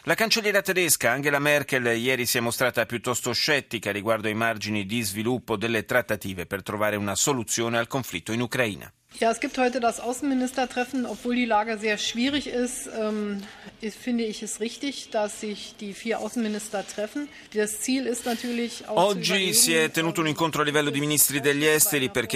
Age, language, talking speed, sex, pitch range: 30-49, Italian, 160 wpm, male, 115-155 Hz